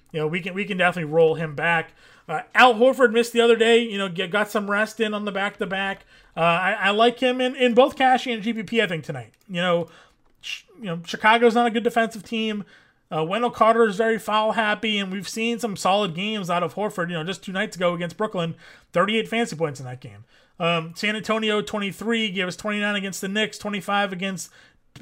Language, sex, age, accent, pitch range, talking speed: English, male, 30-49, American, 175-225 Hz, 225 wpm